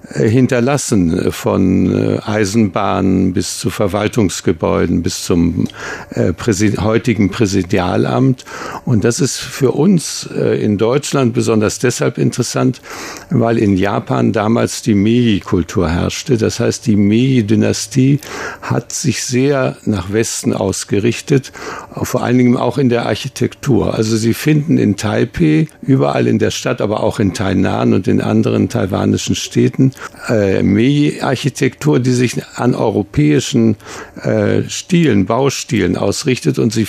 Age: 60-79